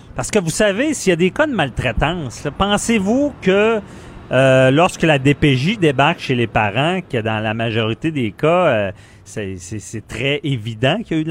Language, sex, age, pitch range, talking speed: French, male, 40-59, 110-165 Hz, 200 wpm